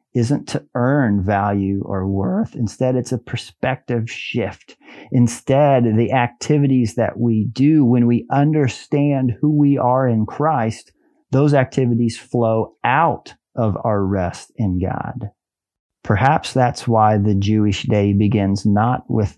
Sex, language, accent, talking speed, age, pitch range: male, English, American, 135 wpm, 40-59, 105-125 Hz